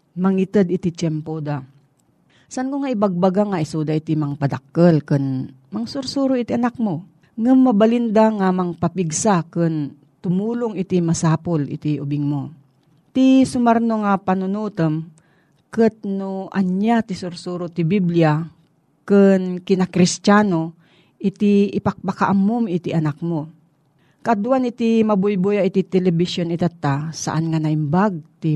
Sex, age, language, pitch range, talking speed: female, 40-59, Filipino, 160-210 Hz, 120 wpm